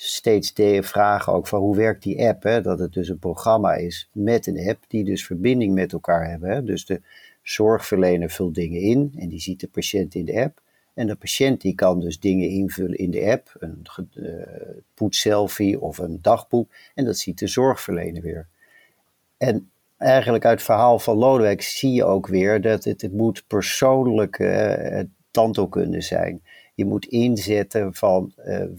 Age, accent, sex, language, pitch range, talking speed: 50-69, Dutch, male, Dutch, 95-120 Hz, 185 wpm